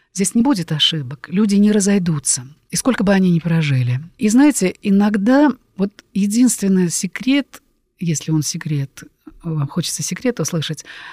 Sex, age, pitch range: female, 50-69, 160-225 Hz